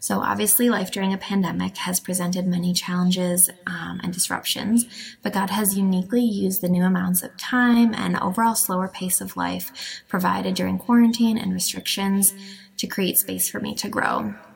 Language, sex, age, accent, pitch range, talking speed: English, female, 20-39, American, 185-230 Hz, 170 wpm